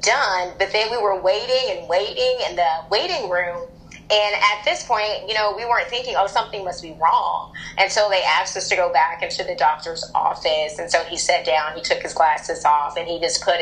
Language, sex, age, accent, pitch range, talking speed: English, female, 30-49, American, 170-200 Hz, 230 wpm